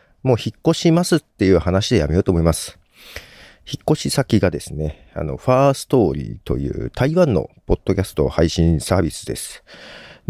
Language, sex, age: Japanese, male, 40-59